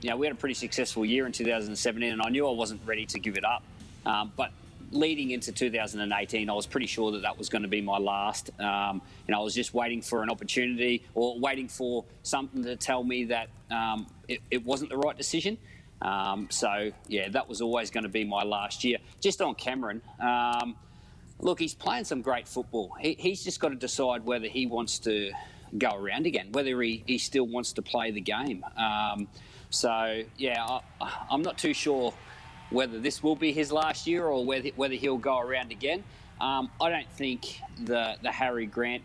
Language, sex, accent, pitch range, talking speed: English, male, Australian, 110-130 Hz, 210 wpm